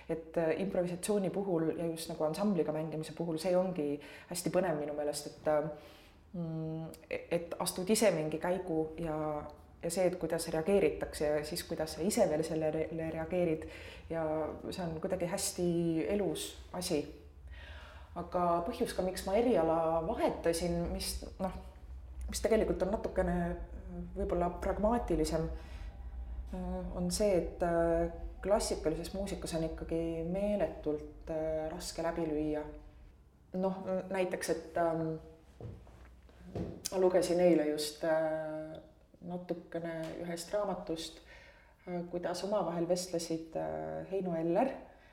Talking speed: 115 wpm